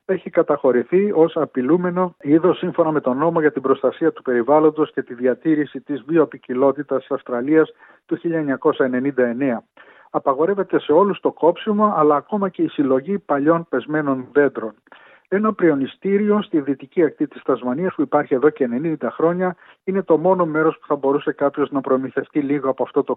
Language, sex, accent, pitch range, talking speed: Greek, male, native, 135-170 Hz, 165 wpm